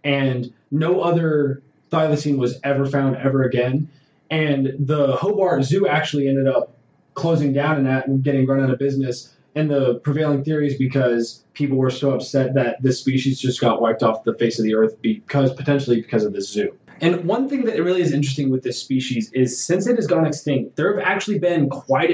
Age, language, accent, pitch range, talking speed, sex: 20-39, English, American, 130-160 Hz, 205 wpm, male